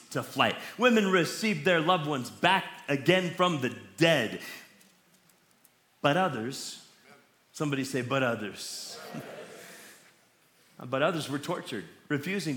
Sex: male